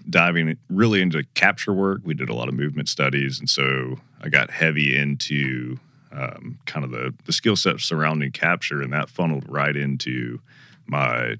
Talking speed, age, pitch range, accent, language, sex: 175 wpm, 30-49, 70-80 Hz, American, English, male